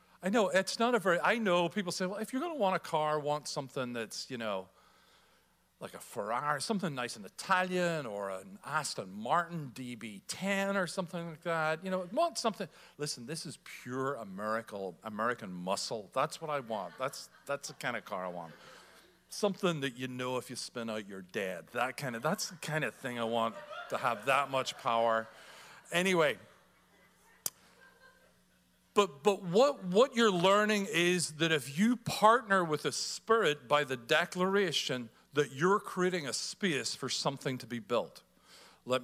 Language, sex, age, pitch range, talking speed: English, male, 40-59, 130-195 Hz, 175 wpm